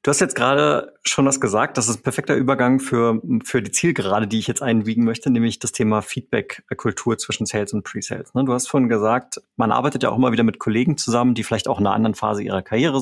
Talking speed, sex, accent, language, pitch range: 235 wpm, male, German, German, 110-135 Hz